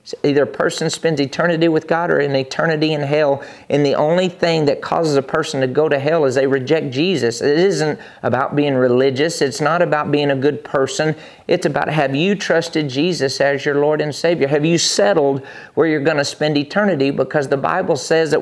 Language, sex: English, male